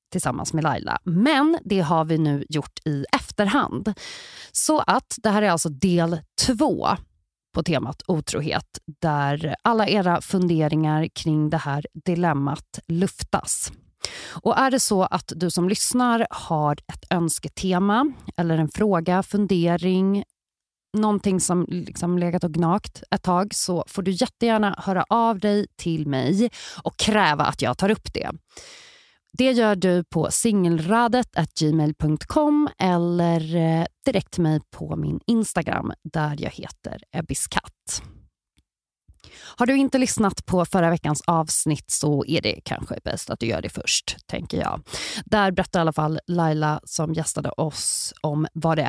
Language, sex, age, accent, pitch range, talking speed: English, female, 30-49, Swedish, 155-200 Hz, 145 wpm